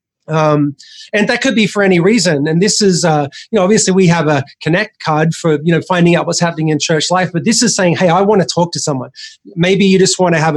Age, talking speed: 30-49, 265 wpm